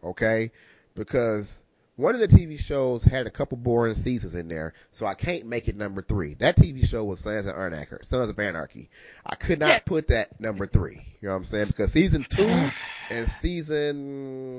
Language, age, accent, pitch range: English, 30-49, American, 95-130 Hz